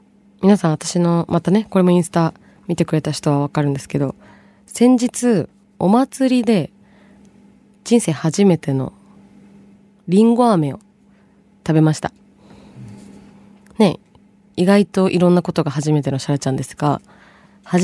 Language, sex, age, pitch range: Japanese, female, 20-39, 155-205 Hz